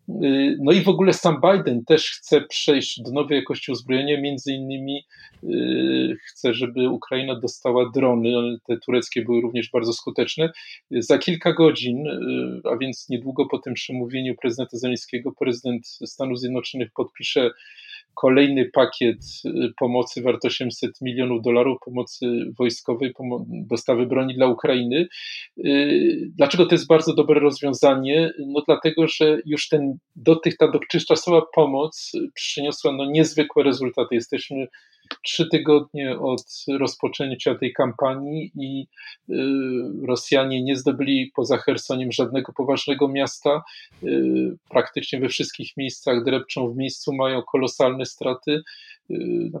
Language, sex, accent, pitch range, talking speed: Polish, male, native, 125-150 Hz, 115 wpm